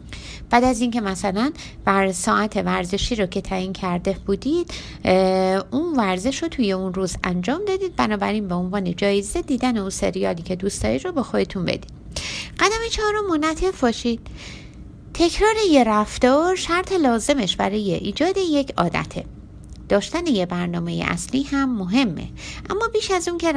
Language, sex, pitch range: Persian, female, 195-300 Hz